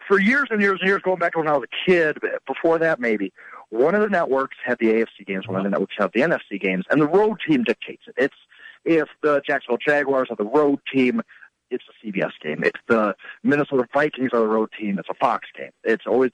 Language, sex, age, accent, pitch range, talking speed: English, male, 50-69, American, 125-190 Hz, 240 wpm